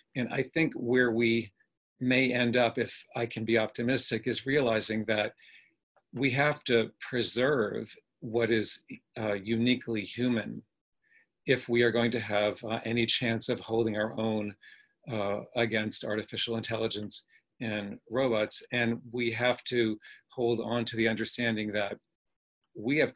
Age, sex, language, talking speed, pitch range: 50-69, male, English, 145 wpm, 105-120 Hz